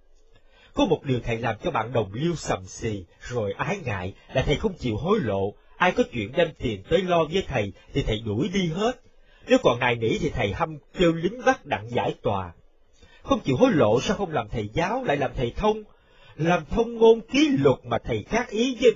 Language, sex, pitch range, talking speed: Vietnamese, male, 115-195 Hz, 220 wpm